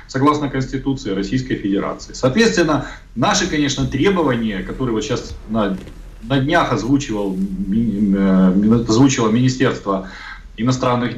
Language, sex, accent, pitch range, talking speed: Russian, male, native, 110-150 Hz, 85 wpm